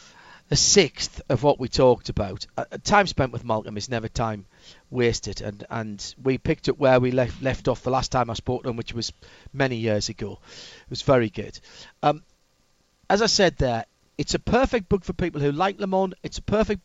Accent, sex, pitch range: British, male, 125-180 Hz